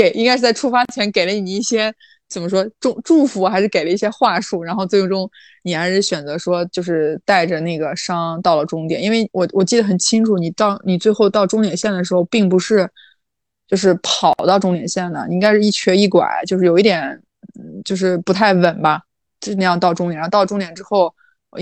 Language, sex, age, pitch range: Chinese, female, 20-39, 175-210 Hz